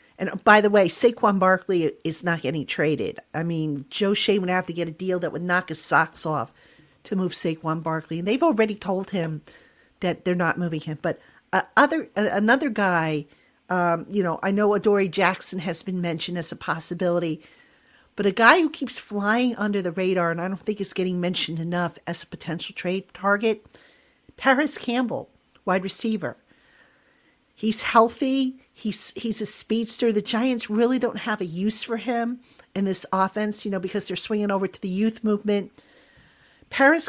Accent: American